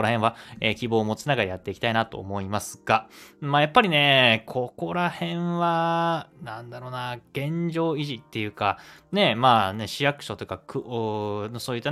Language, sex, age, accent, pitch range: Japanese, male, 20-39, native, 105-140 Hz